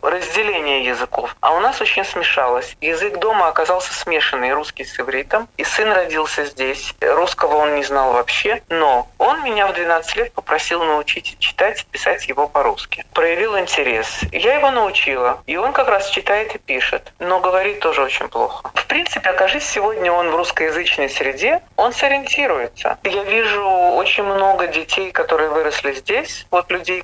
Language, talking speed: Russian, 160 wpm